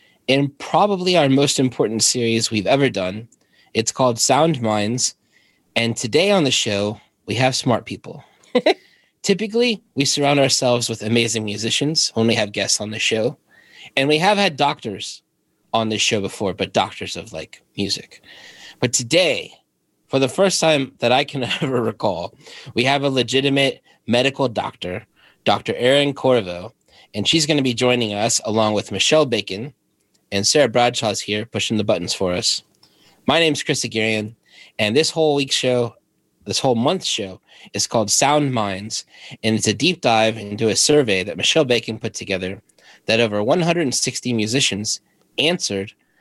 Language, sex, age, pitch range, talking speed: English, male, 30-49, 110-140 Hz, 160 wpm